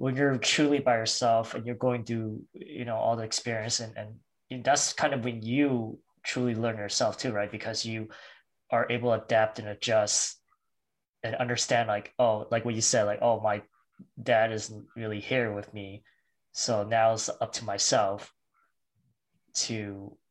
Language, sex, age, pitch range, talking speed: English, male, 20-39, 110-125 Hz, 170 wpm